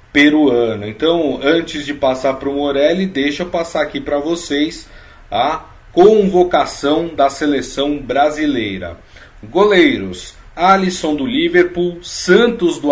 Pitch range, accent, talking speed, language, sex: 120-165 Hz, Brazilian, 115 wpm, Portuguese, male